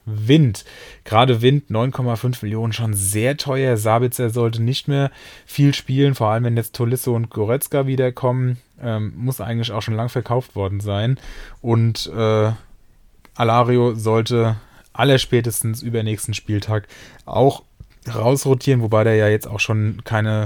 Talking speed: 140 wpm